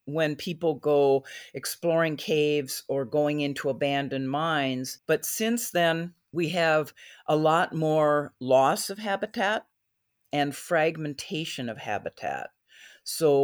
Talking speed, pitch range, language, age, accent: 115 wpm, 130-155 Hz, English, 50-69, American